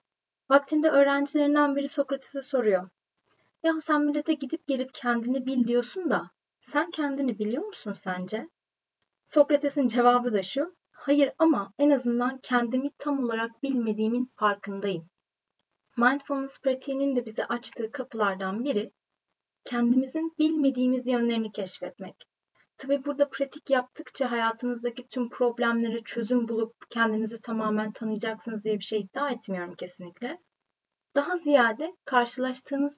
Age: 30-49